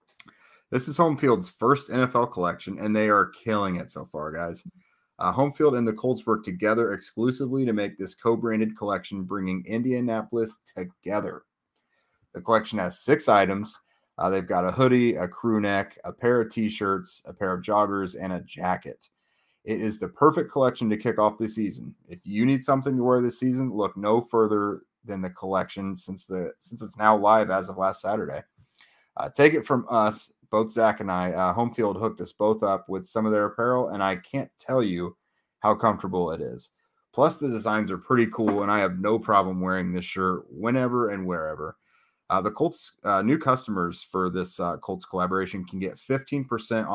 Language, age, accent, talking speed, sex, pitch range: English, 30-49, American, 190 wpm, male, 95-120 Hz